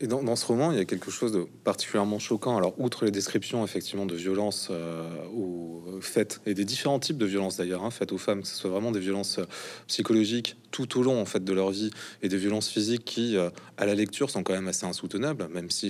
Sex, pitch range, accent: male, 105-145 Hz, French